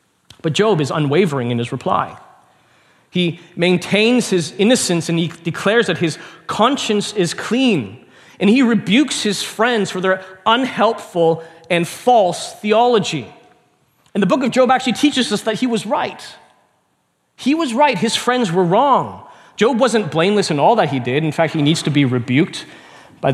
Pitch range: 135-200 Hz